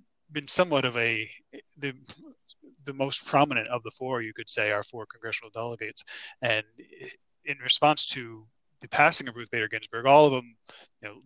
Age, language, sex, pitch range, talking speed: 20-39, English, male, 115-140 Hz, 175 wpm